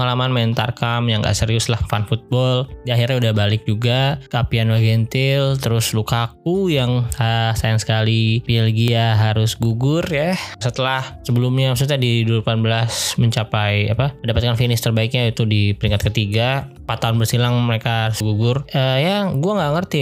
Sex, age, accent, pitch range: male, 20-39, Indonesian, 110-135 Hz